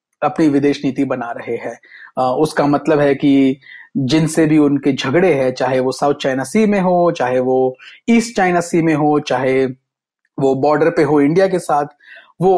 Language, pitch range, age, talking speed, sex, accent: Hindi, 135-170 Hz, 30-49, 180 wpm, male, native